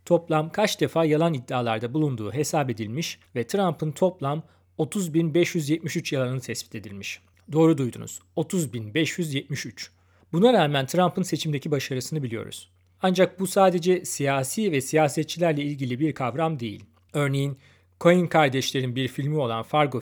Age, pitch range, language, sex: 40-59, 120-170 Hz, Turkish, male